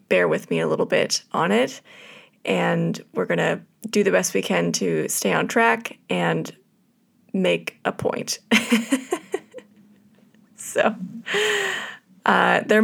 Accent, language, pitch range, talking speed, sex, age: American, English, 170-230 Hz, 130 wpm, female, 20-39